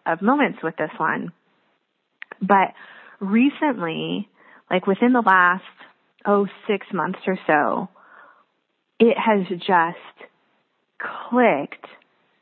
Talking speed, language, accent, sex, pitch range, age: 95 wpm, English, American, female, 180-220 Hz, 30-49